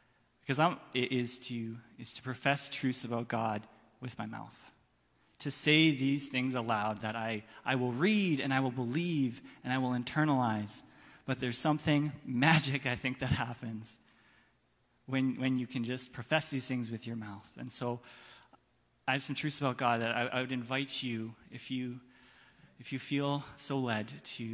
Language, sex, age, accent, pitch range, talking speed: English, male, 20-39, American, 115-135 Hz, 175 wpm